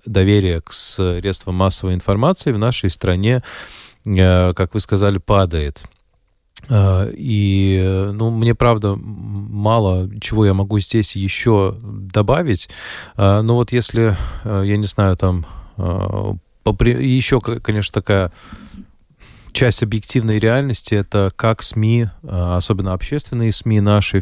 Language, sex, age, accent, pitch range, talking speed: Russian, male, 20-39, native, 90-110 Hz, 105 wpm